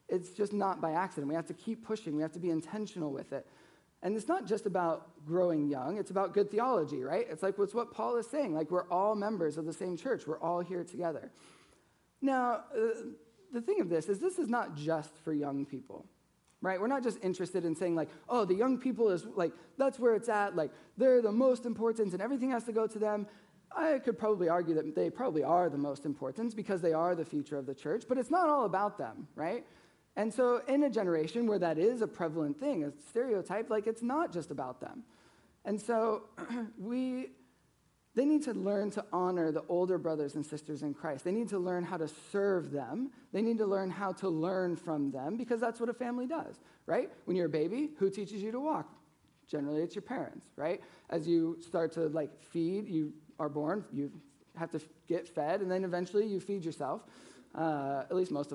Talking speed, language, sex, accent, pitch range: 220 wpm, English, male, American, 160-230 Hz